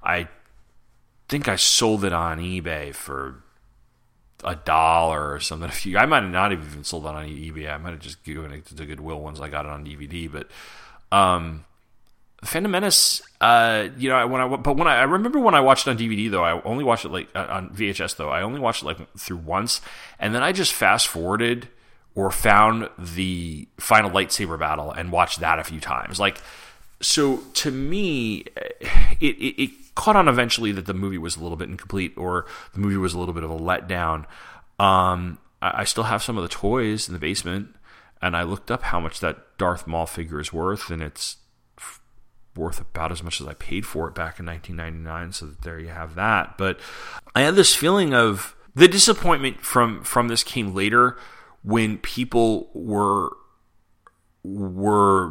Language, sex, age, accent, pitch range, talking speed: English, male, 30-49, American, 80-115 Hz, 195 wpm